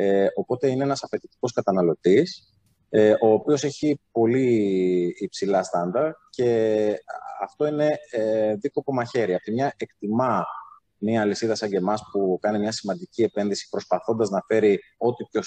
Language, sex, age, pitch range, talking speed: Greek, male, 30-49, 95-120 Hz, 140 wpm